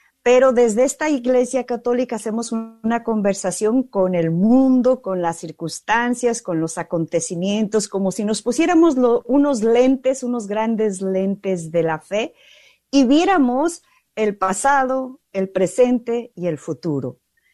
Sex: female